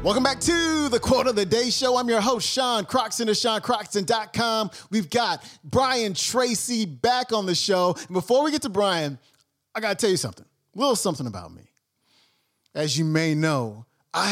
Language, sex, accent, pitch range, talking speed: English, male, American, 140-200 Hz, 190 wpm